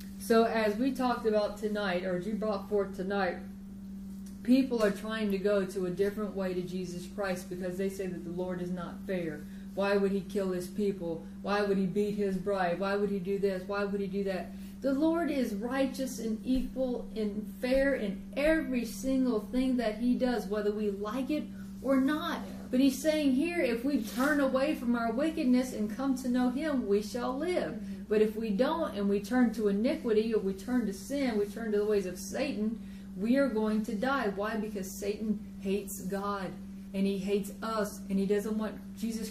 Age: 30-49